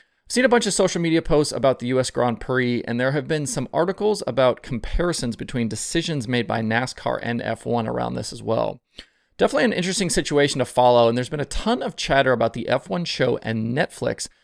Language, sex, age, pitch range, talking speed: English, male, 30-49, 120-160 Hz, 210 wpm